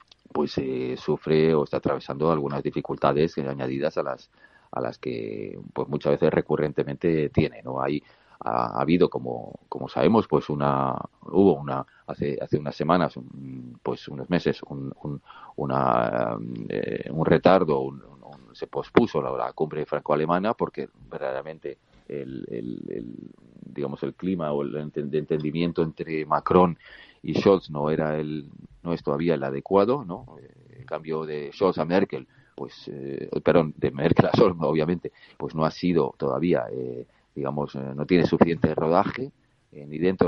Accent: Spanish